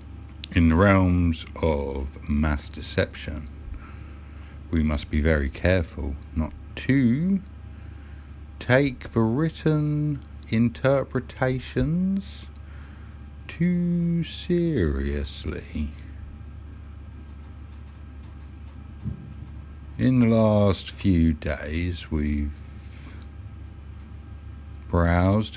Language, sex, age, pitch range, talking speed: English, male, 60-79, 75-100 Hz, 60 wpm